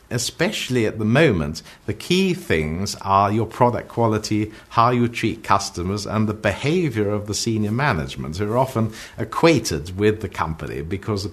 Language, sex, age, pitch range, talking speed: English, male, 50-69, 100-120 Hz, 160 wpm